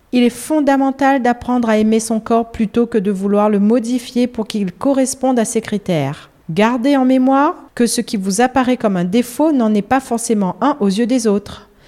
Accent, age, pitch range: French, 40-59, 190-255 Hz